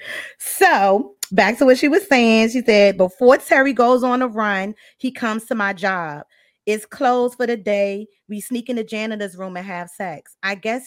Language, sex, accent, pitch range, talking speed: English, female, American, 180-220 Hz, 200 wpm